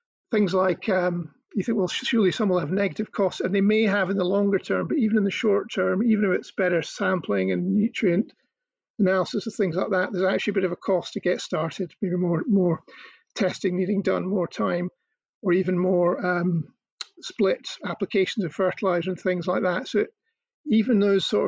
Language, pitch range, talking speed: English, 180-215 Hz, 205 wpm